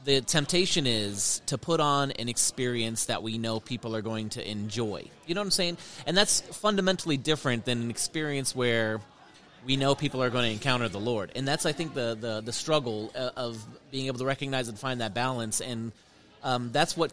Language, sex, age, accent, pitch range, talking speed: English, male, 30-49, American, 120-145 Hz, 205 wpm